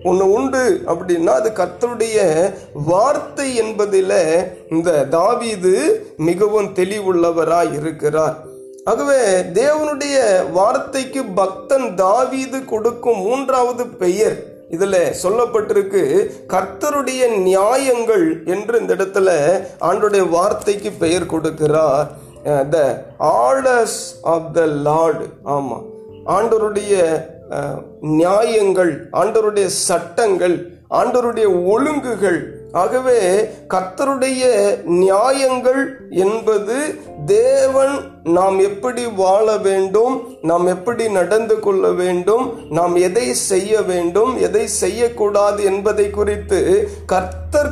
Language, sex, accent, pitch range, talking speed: Tamil, male, native, 180-285 Hz, 70 wpm